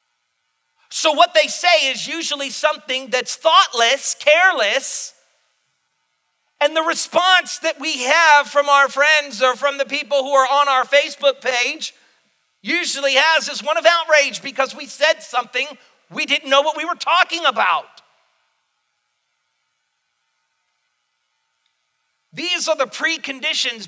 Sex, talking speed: male, 130 wpm